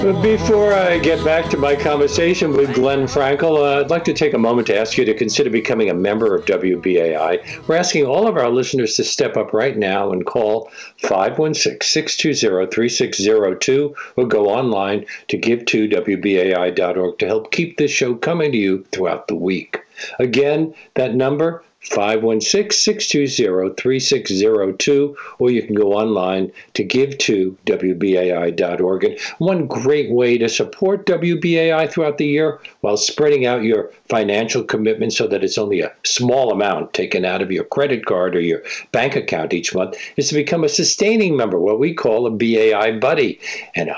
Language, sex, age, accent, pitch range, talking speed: English, male, 60-79, American, 110-165 Hz, 180 wpm